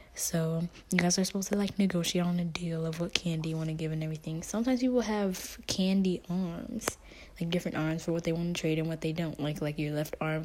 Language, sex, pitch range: English, female, 165-210 Hz